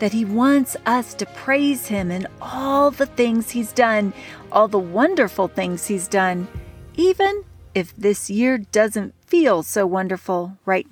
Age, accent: 40-59, American